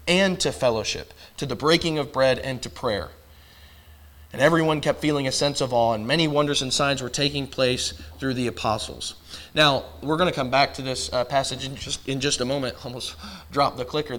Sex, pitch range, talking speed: male, 125-155 Hz, 210 wpm